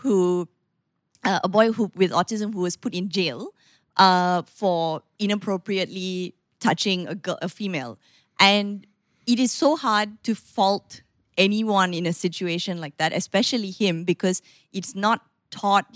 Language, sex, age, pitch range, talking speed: English, female, 20-39, 170-205 Hz, 145 wpm